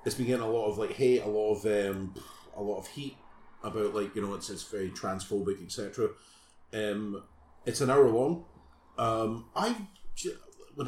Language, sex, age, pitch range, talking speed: English, male, 40-59, 95-125 Hz, 180 wpm